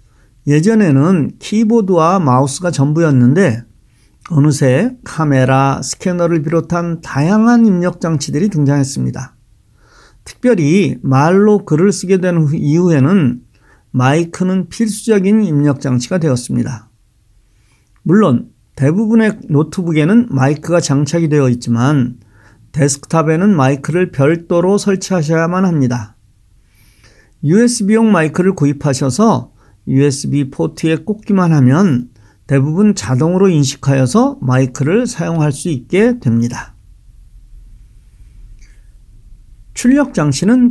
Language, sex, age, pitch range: Korean, male, 50-69, 130-190 Hz